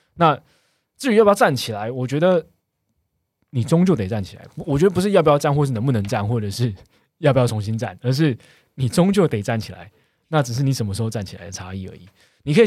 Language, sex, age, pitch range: Chinese, male, 20-39, 105-135 Hz